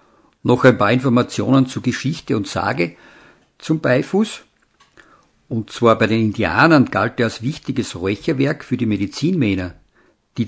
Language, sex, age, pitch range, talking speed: German, male, 50-69, 110-145 Hz, 135 wpm